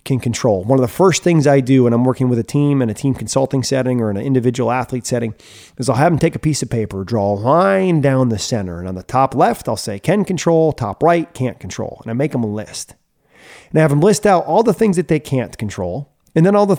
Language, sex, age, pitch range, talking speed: English, male, 30-49, 125-190 Hz, 275 wpm